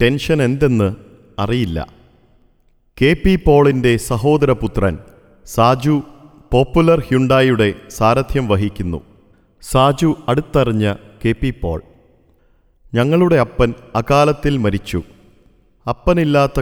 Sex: male